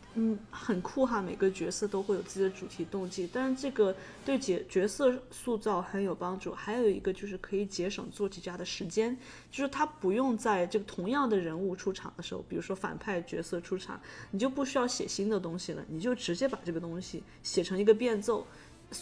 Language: Chinese